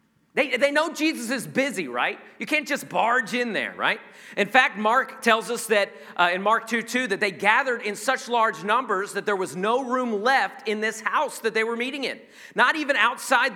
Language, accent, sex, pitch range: English, American, male, 180-245 Hz